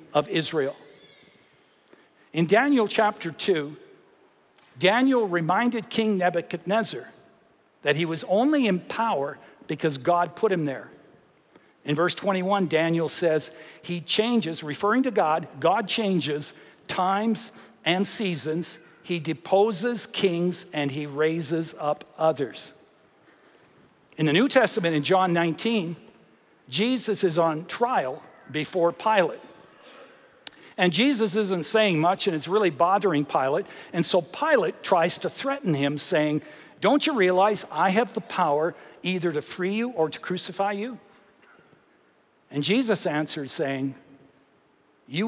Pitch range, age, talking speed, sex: 155-210 Hz, 60-79, 125 wpm, male